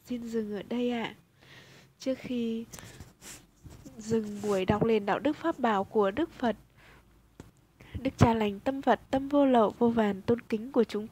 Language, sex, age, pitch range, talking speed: Vietnamese, female, 20-39, 200-255 Hz, 180 wpm